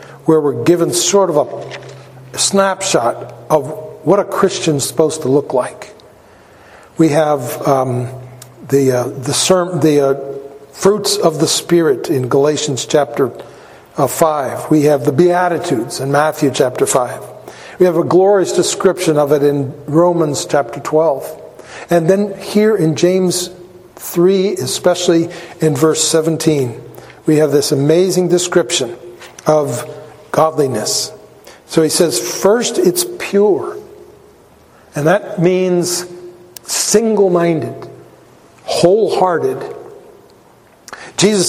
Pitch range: 155-195 Hz